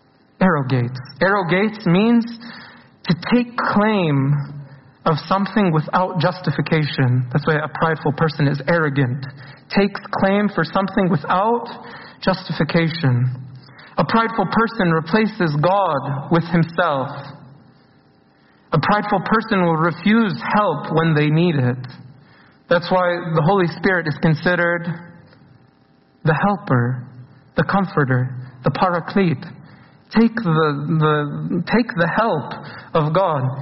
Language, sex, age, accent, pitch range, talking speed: English, male, 40-59, American, 155-200 Hz, 110 wpm